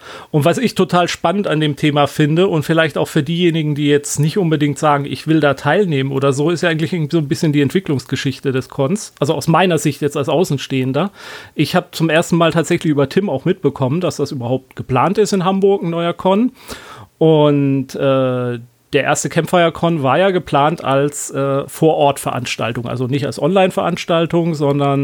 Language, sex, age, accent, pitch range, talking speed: German, male, 40-59, German, 135-170 Hz, 190 wpm